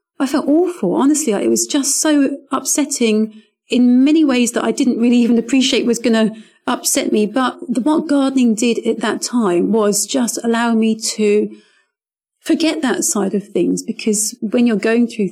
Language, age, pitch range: English, 40-59, 215-270 Hz